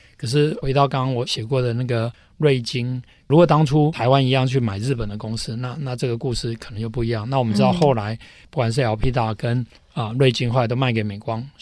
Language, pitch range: Chinese, 115-140 Hz